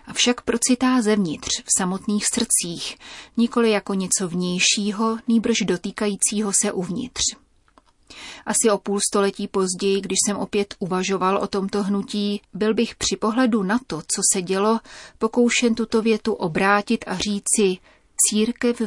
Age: 30-49